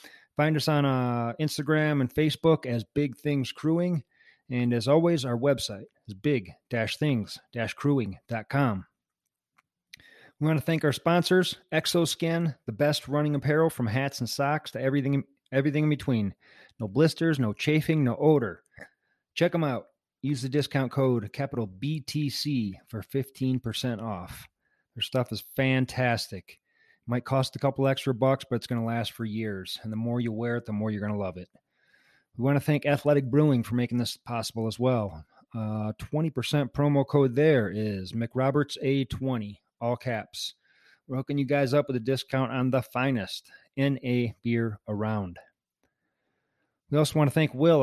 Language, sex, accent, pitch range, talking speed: English, male, American, 115-145 Hz, 160 wpm